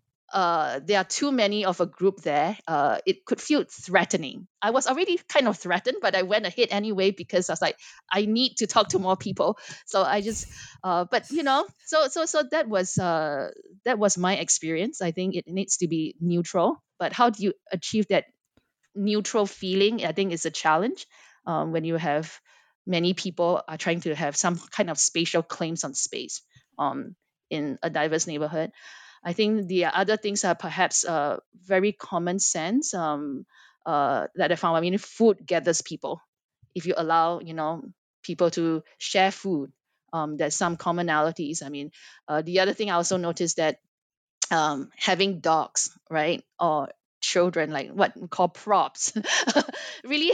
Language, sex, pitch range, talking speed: English, female, 165-205 Hz, 180 wpm